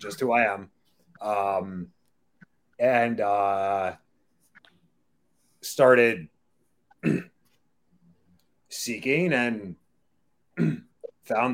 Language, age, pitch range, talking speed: English, 30-49, 95-135 Hz, 55 wpm